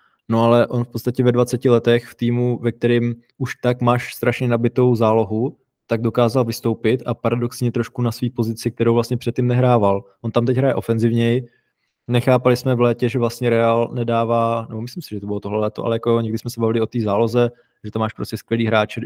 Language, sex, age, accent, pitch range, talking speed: Czech, male, 20-39, native, 110-120 Hz, 210 wpm